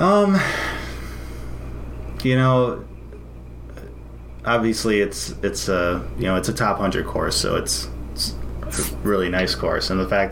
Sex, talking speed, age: male, 140 wpm, 30-49